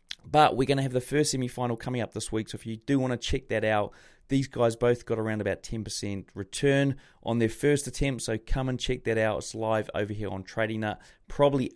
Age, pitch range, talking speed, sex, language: 30-49, 115-135 Hz, 245 wpm, male, English